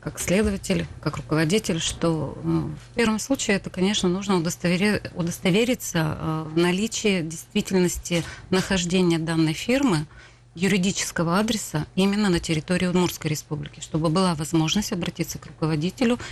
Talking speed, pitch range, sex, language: 120 wpm, 155-195 Hz, female, Russian